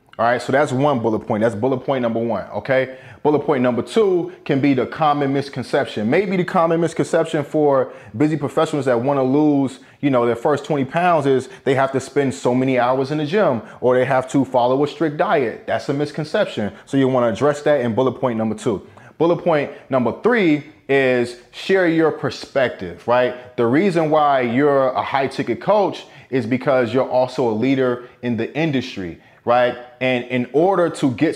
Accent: American